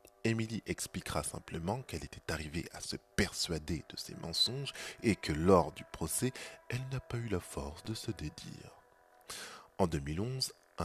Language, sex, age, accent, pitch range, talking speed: French, male, 20-39, French, 80-120 Hz, 155 wpm